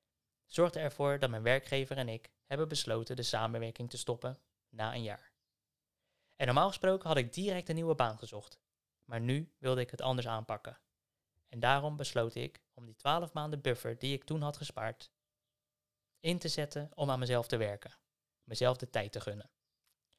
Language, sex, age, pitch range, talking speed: Dutch, male, 20-39, 120-150 Hz, 180 wpm